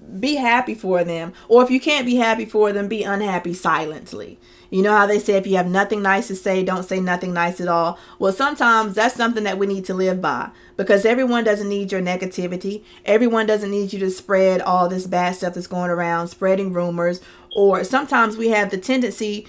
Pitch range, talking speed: 185-220 Hz, 215 wpm